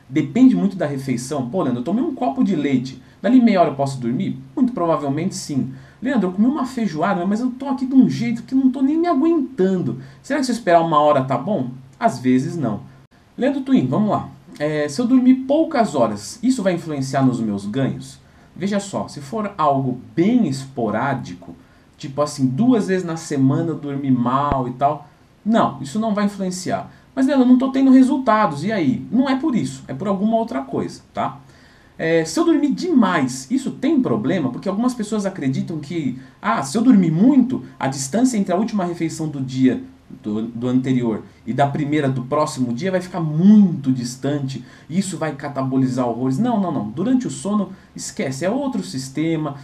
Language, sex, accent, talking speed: Portuguese, male, Brazilian, 195 wpm